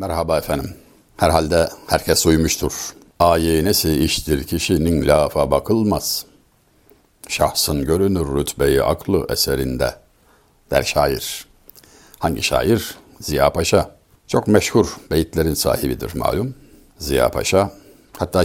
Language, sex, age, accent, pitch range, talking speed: Turkish, male, 60-79, native, 75-95 Hz, 100 wpm